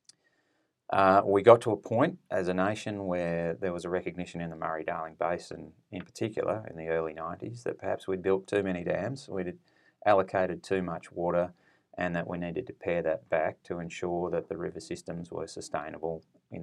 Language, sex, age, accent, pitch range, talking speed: English, male, 30-49, Australian, 80-95 Hz, 190 wpm